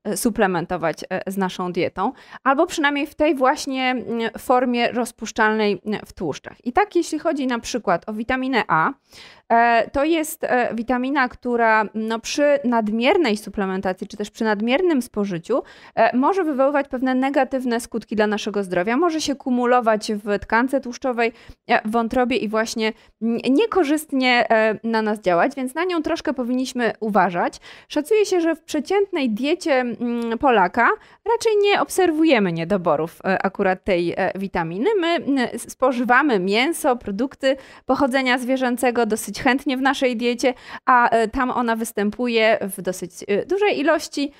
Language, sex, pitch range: Polish, female, 215-275 Hz